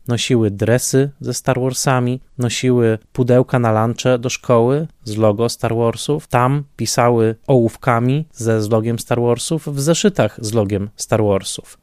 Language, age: Polish, 20-39